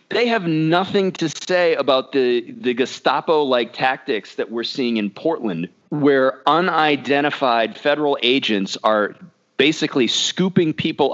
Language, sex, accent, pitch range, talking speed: English, male, American, 115-165 Hz, 125 wpm